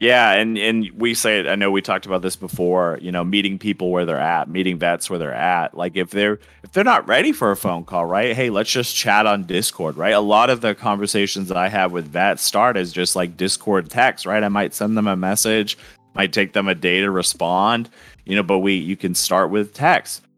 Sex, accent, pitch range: male, American, 90-110 Hz